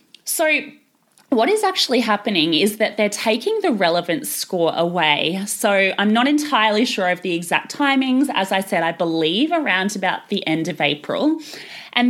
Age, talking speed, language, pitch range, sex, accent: 20-39, 170 wpm, English, 185-265 Hz, female, Australian